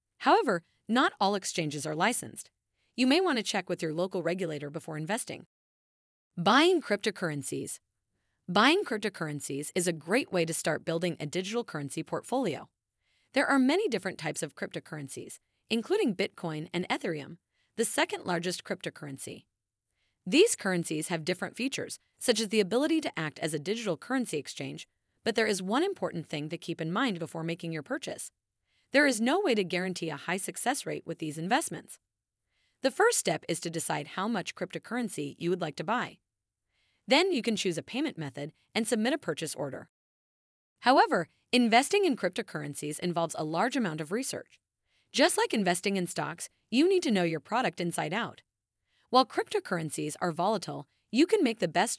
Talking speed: 170 wpm